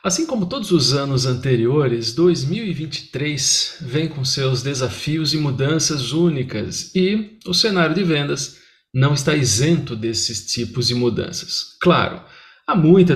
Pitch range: 125-175 Hz